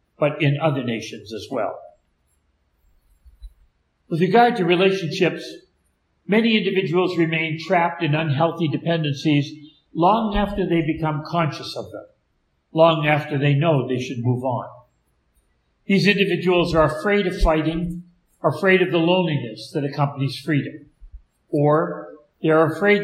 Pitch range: 130-175 Hz